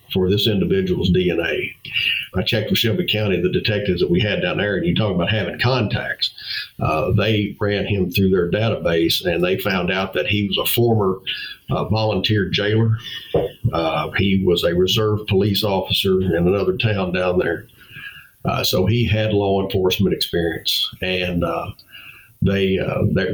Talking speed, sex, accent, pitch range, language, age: 165 wpm, male, American, 95-110 Hz, English, 50-69